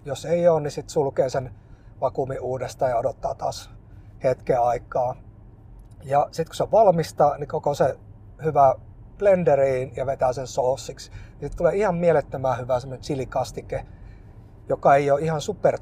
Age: 30-49